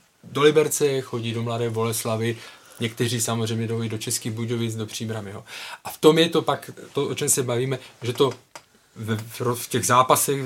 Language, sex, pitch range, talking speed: Czech, male, 115-135 Hz, 180 wpm